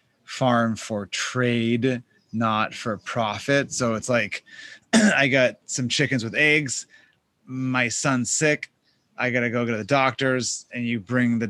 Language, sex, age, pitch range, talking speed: English, male, 20-39, 115-135 Hz, 150 wpm